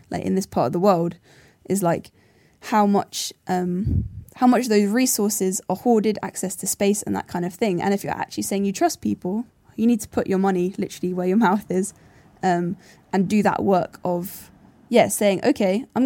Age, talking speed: 10-29, 205 wpm